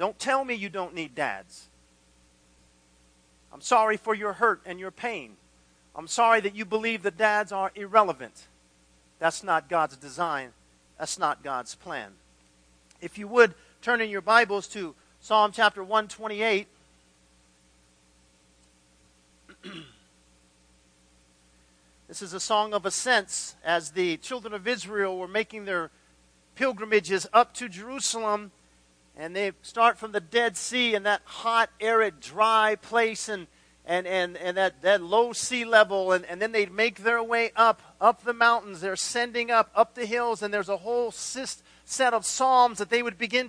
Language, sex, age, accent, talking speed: English, male, 40-59, American, 155 wpm